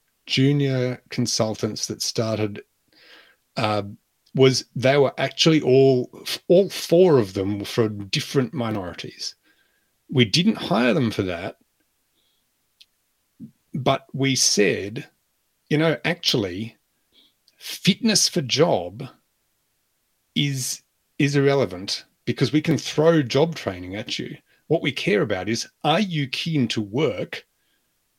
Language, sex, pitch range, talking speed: English, male, 110-145 Hz, 115 wpm